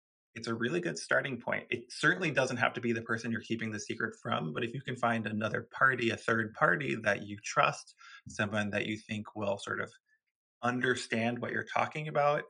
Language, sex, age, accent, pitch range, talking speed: English, male, 20-39, American, 110-125 Hz, 210 wpm